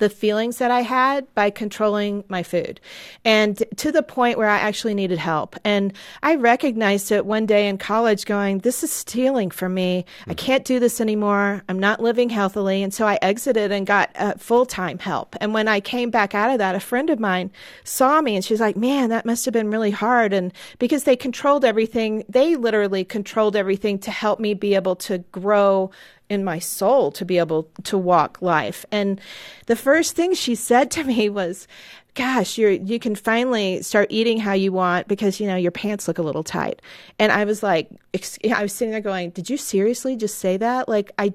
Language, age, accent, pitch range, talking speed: English, 40-59, American, 200-240 Hz, 210 wpm